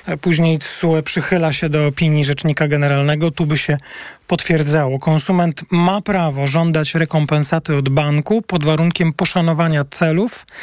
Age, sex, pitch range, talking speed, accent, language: 40-59, male, 150-175 Hz, 125 wpm, native, Polish